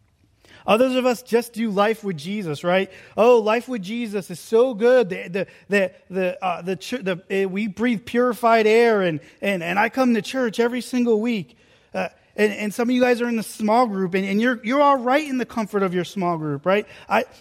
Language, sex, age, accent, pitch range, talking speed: English, male, 30-49, American, 165-240 Hz, 225 wpm